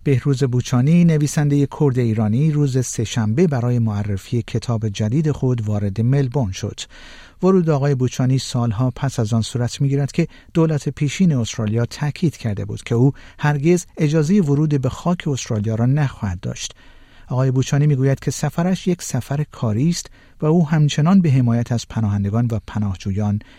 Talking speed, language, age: 155 wpm, Persian, 50-69